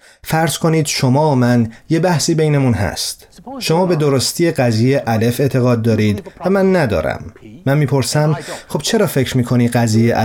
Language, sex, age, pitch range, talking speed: Persian, male, 30-49, 120-155 Hz, 150 wpm